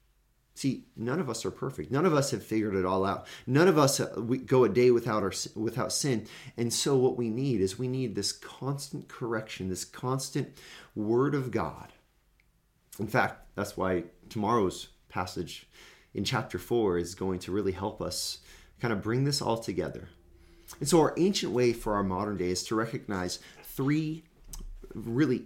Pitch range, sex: 95-125 Hz, male